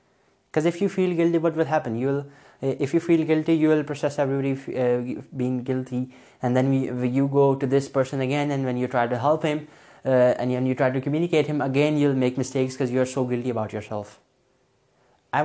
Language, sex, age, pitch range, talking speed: Urdu, male, 20-39, 130-160 Hz, 220 wpm